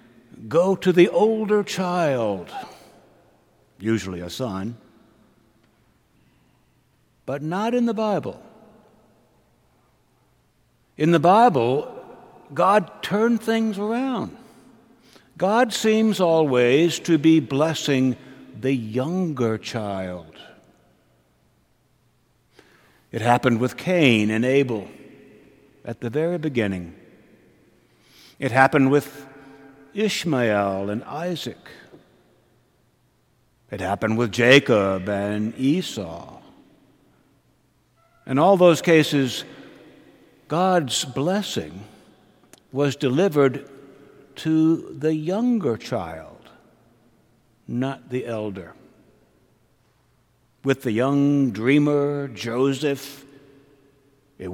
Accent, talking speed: American, 80 wpm